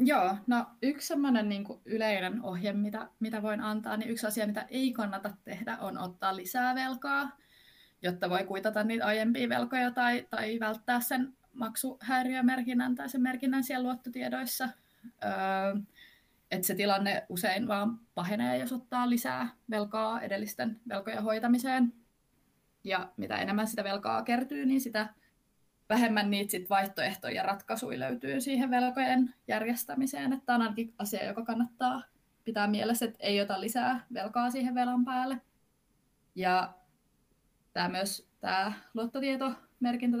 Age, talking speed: 20-39, 135 wpm